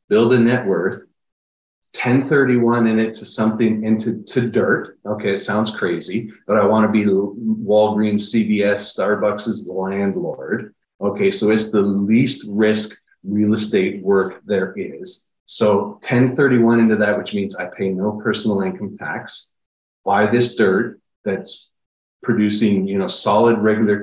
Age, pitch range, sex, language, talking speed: 30-49, 105-120 Hz, male, English, 150 wpm